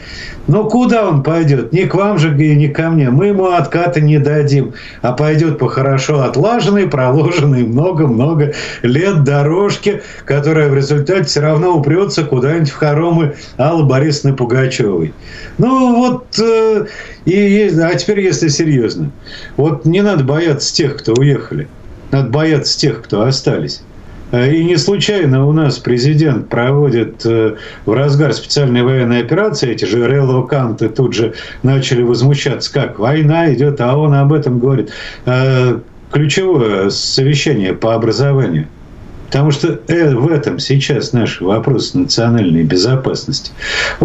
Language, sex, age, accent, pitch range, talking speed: Russian, male, 50-69, native, 125-160 Hz, 135 wpm